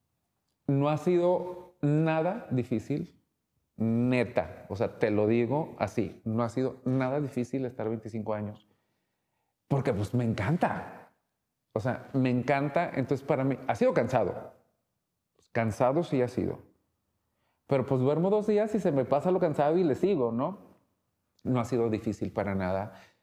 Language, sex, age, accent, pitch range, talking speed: Spanish, male, 40-59, Mexican, 110-140 Hz, 155 wpm